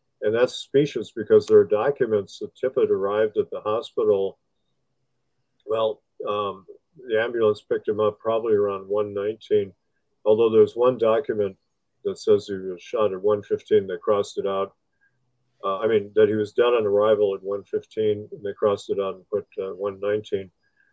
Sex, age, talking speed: male, 50-69, 165 wpm